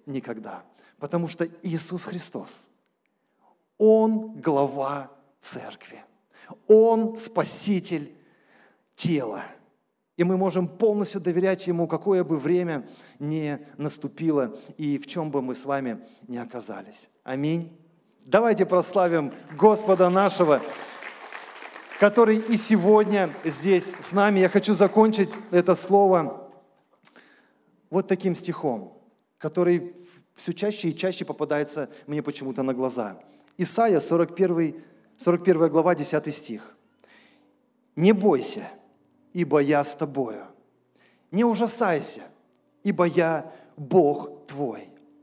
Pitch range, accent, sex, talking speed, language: 145-210 Hz, native, male, 105 wpm, Russian